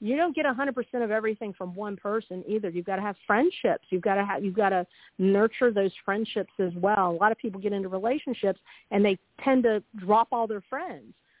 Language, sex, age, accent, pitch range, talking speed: English, female, 40-59, American, 190-240 Hz, 205 wpm